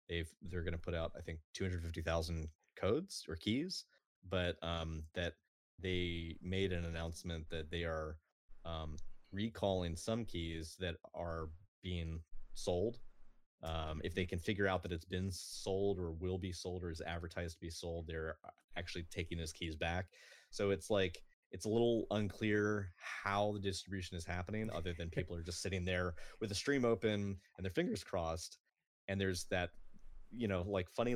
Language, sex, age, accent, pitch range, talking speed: English, male, 20-39, American, 85-100 Hz, 170 wpm